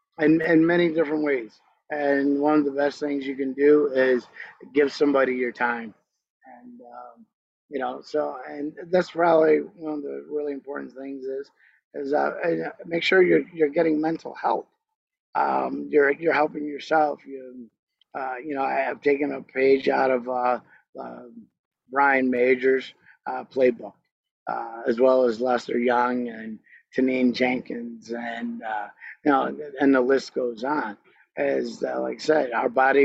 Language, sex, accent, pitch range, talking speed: English, male, American, 125-145 Hz, 165 wpm